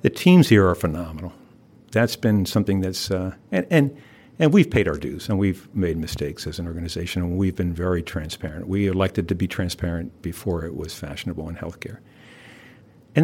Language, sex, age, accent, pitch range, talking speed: English, male, 60-79, American, 90-115 Hz, 185 wpm